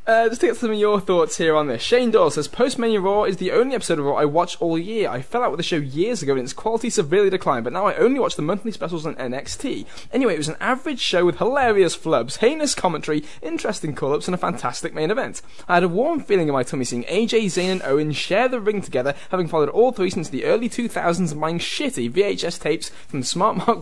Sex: male